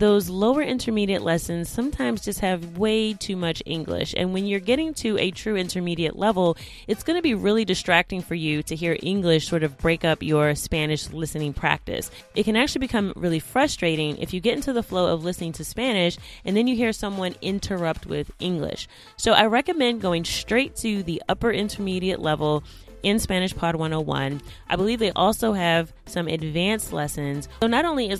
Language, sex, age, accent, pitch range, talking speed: English, female, 20-39, American, 160-215 Hz, 190 wpm